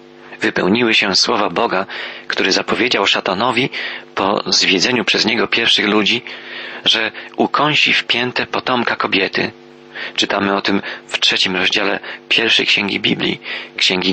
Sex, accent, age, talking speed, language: male, native, 40-59, 120 wpm, Polish